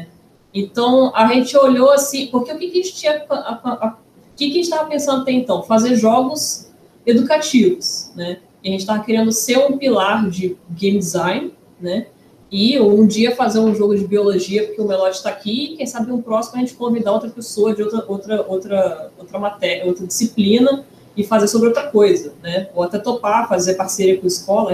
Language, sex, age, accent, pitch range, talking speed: Portuguese, female, 20-39, Brazilian, 205-275 Hz, 190 wpm